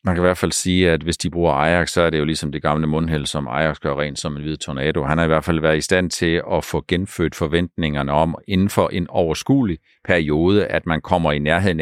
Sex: male